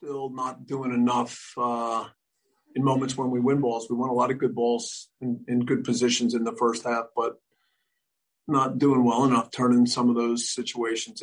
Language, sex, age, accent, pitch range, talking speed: English, male, 40-59, American, 115-135 Hz, 190 wpm